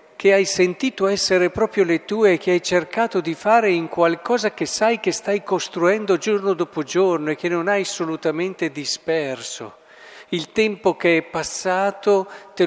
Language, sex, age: Italian, male, 50-69